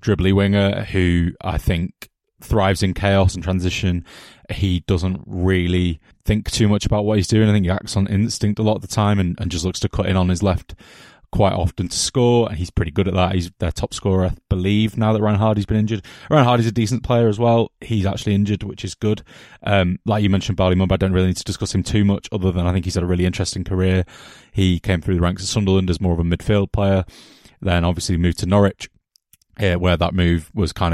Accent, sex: British, male